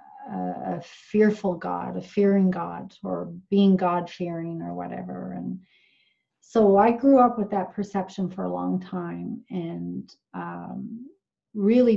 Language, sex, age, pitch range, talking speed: English, female, 40-59, 180-215 Hz, 130 wpm